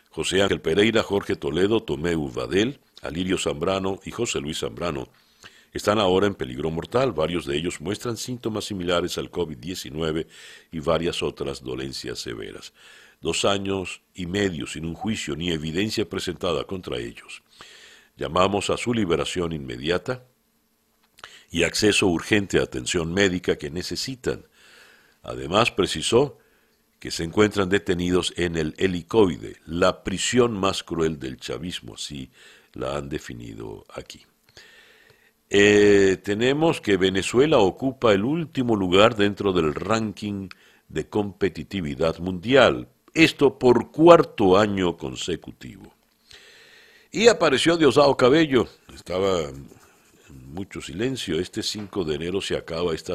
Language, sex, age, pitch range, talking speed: Spanish, male, 60-79, 80-105 Hz, 125 wpm